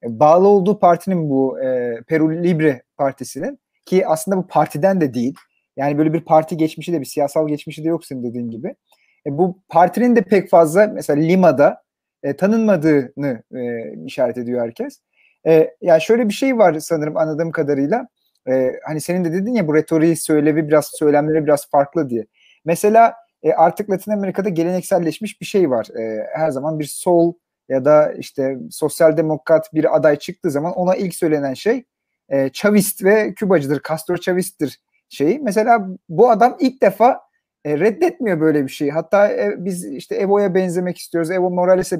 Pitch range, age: 155-195 Hz, 40-59